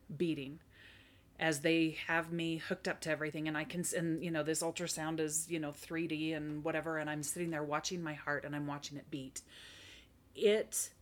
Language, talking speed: English, 195 wpm